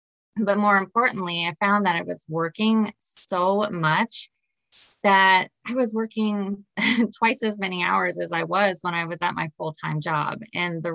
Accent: American